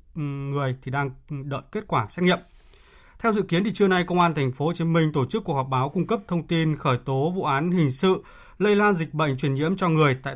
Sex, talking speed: male, 260 wpm